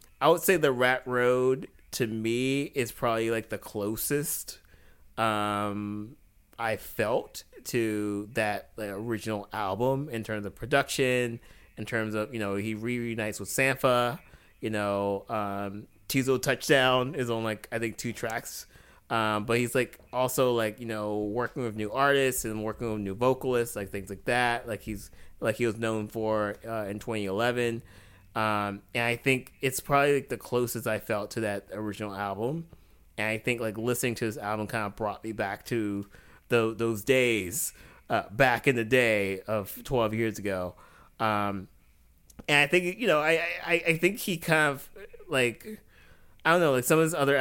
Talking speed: 175 wpm